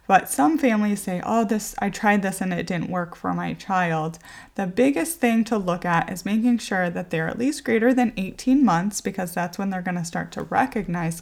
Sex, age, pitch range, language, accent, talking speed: female, 20-39, 175-235 Hz, English, American, 225 wpm